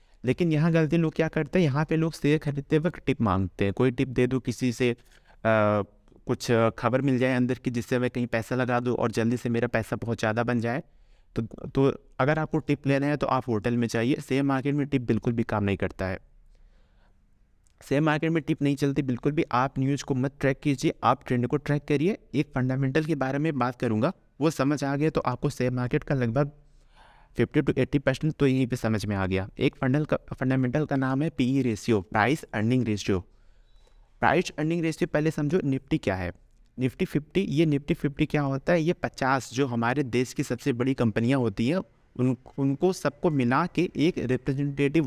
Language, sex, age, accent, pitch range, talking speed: Hindi, male, 30-49, native, 120-150 Hz, 210 wpm